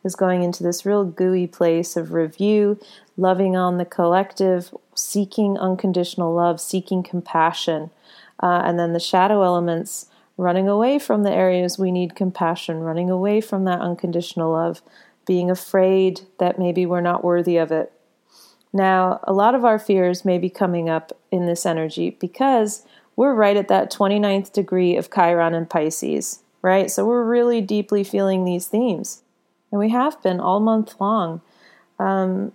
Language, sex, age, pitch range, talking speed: English, female, 30-49, 175-205 Hz, 160 wpm